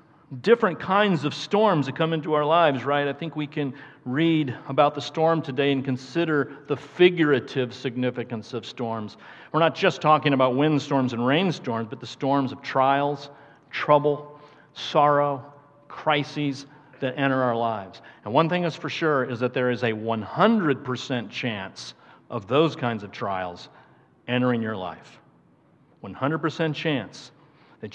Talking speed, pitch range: 150 wpm, 130-160 Hz